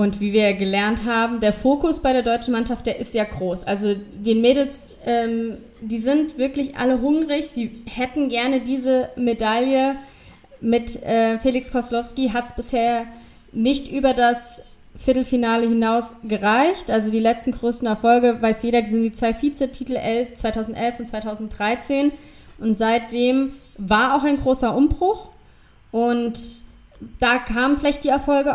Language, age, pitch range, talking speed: German, 20-39, 225-260 Hz, 145 wpm